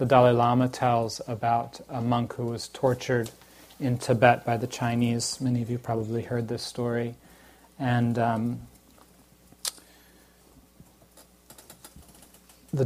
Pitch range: 120-135 Hz